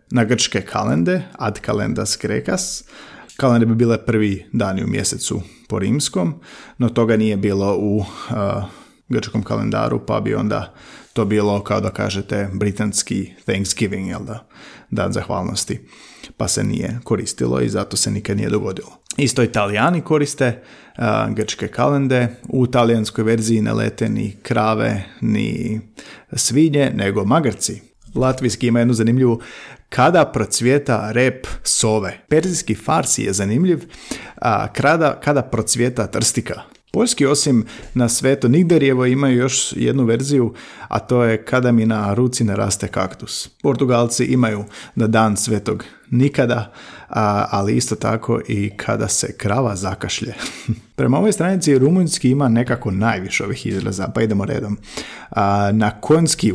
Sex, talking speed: male, 135 wpm